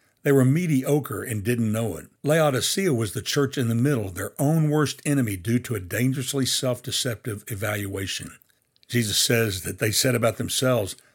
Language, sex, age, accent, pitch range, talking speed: English, male, 60-79, American, 110-135 Hz, 165 wpm